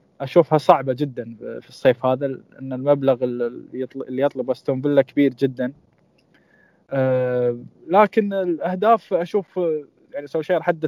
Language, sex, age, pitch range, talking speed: Arabic, male, 20-39, 135-170 Hz, 120 wpm